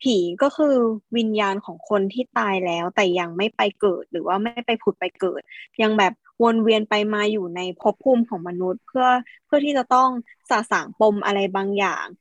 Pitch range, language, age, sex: 195-240 Hz, Thai, 20-39, female